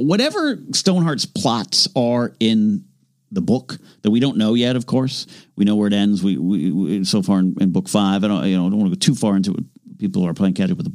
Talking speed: 265 wpm